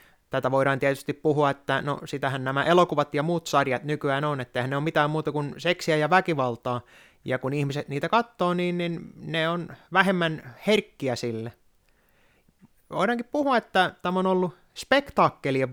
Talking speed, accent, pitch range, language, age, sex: 160 wpm, native, 135-180 Hz, Finnish, 30-49, male